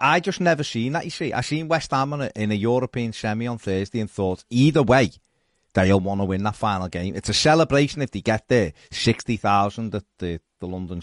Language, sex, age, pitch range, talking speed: English, male, 40-59, 100-140 Hz, 220 wpm